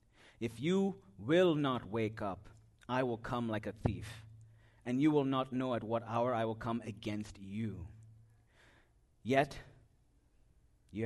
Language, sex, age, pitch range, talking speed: English, male, 30-49, 105-125 Hz, 145 wpm